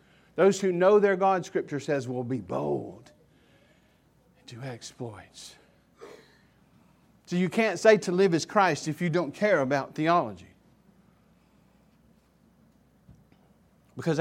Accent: American